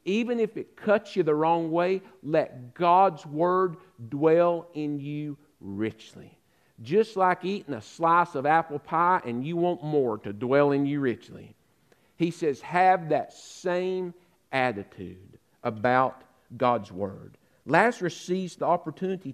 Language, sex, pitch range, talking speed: English, male, 140-195 Hz, 140 wpm